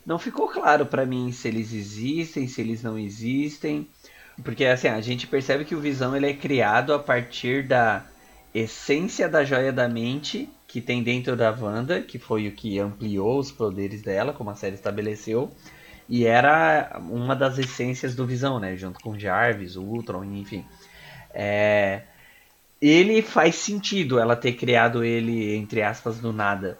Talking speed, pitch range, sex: 170 wpm, 110-145 Hz, male